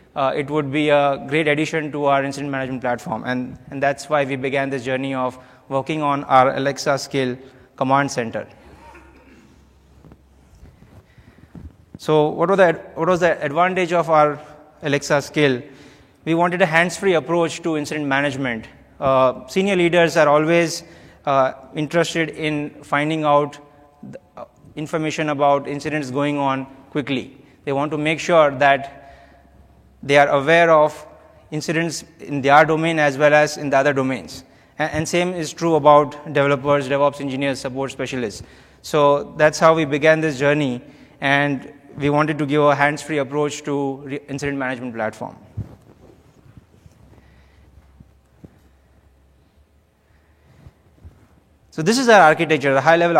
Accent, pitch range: Indian, 135-155 Hz